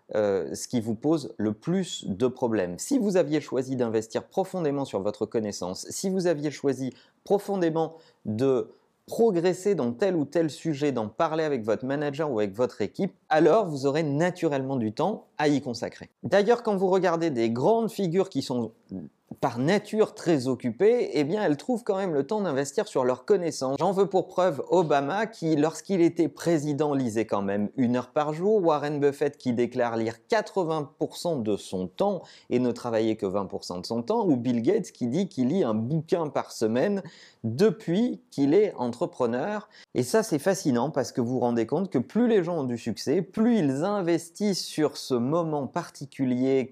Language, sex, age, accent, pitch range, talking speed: French, male, 30-49, French, 125-190 Hz, 185 wpm